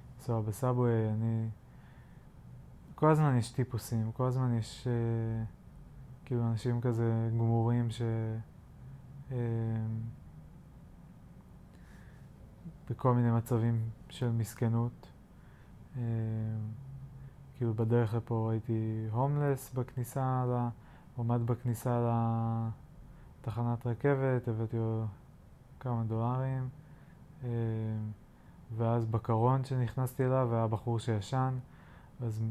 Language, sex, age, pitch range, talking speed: Hebrew, male, 20-39, 115-130 Hz, 85 wpm